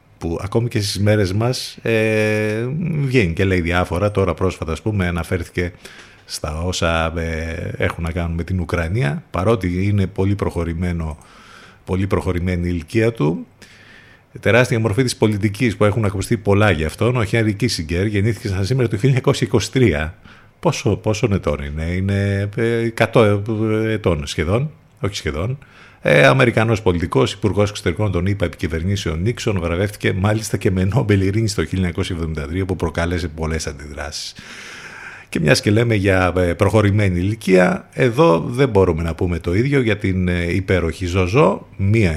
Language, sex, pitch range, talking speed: Greek, male, 90-115 Hz, 140 wpm